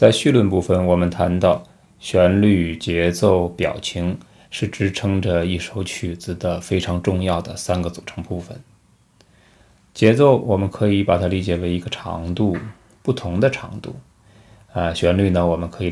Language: Chinese